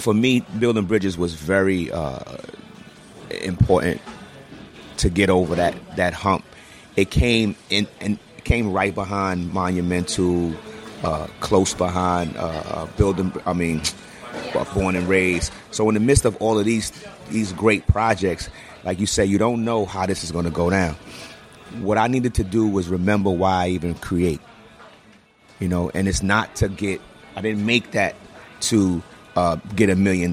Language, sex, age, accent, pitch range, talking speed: English, male, 30-49, American, 90-105 Hz, 165 wpm